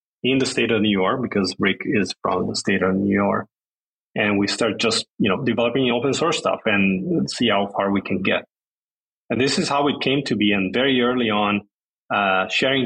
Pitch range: 110-155 Hz